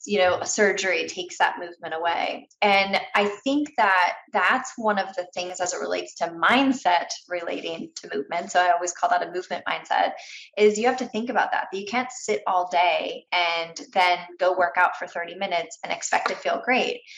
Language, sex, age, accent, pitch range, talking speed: English, female, 20-39, American, 175-215 Hz, 205 wpm